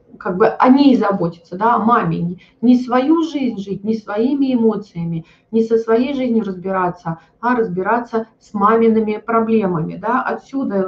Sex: female